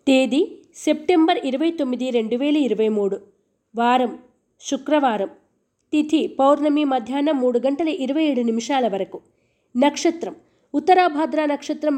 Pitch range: 255-315 Hz